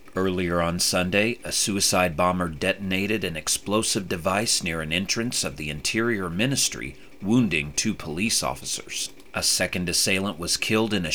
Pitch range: 90-110 Hz